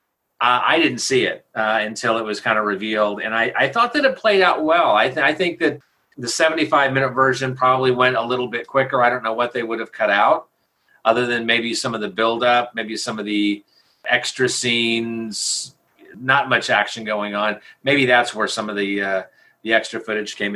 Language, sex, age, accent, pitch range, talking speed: English, male, 40-59, American, 105-130 Hz, 215 wpm